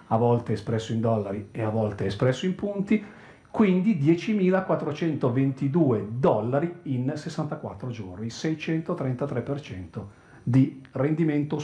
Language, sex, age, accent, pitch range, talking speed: Italian, male, 40-59, native, 115-150 Hz, 105 wpm